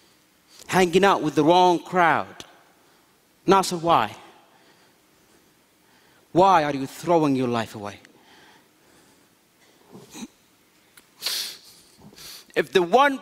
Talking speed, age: 80 wpm, 40-59